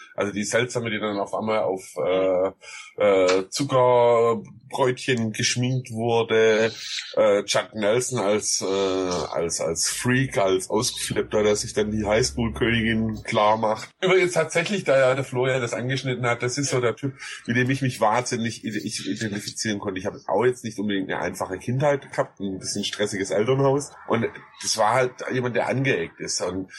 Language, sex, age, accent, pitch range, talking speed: German, male, 30-49, German, 100-125 Hz, 165 wpm